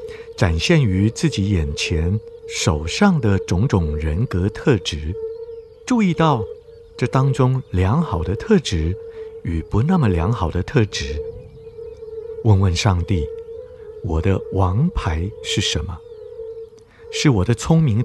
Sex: male